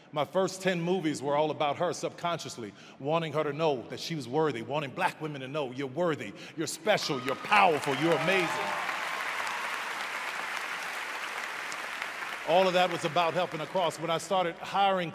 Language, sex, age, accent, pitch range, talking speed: English, male, 40-59, American, 160-195 Hz, 160 wpm